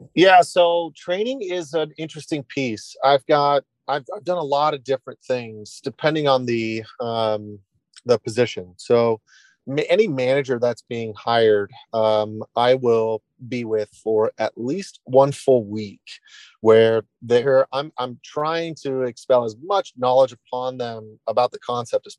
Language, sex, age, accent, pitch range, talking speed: English, male, 30-49, American, 110-135 Hz, 155 wpm